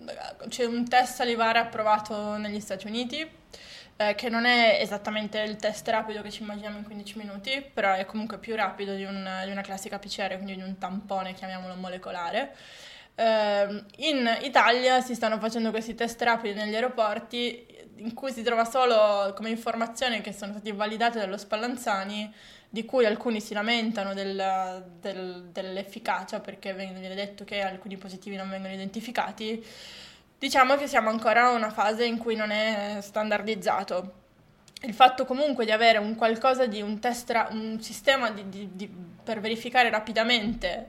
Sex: female